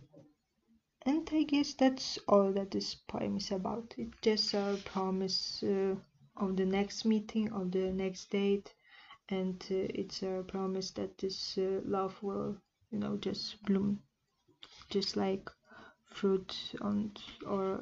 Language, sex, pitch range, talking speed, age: English, female, 185-200 Hz, 140 wpm, 20-39